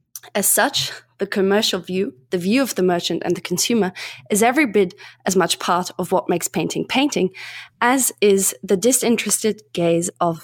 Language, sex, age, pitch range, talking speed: English, female, 20-39, 180-210 Hz, 170 wpm